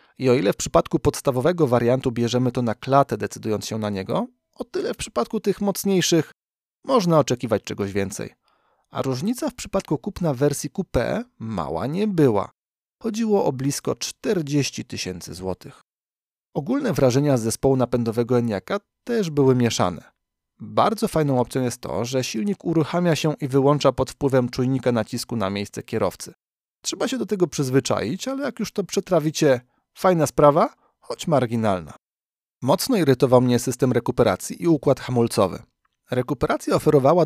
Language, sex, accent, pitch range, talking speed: Polish, male, native, 120-175 Hz, 150 wpm